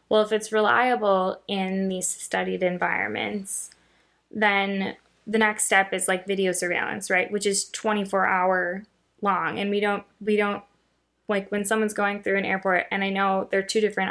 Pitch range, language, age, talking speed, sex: 180-205 Hz, English, 10-29, 170 wpm, female